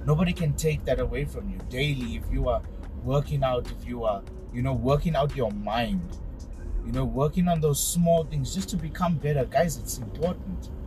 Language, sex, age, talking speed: English, male, 30-49, 200 wpm